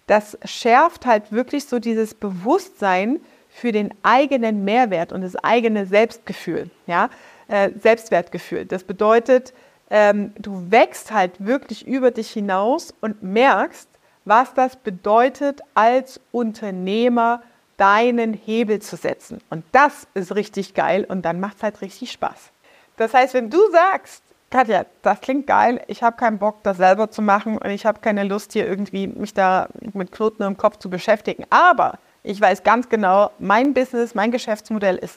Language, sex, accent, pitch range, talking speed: German, female, German, 200-250 Hz, 160 wpm